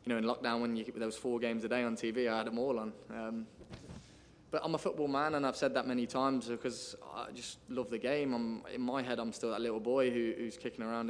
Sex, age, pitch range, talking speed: male, 20-39, 110-125 Hz, 270 wpm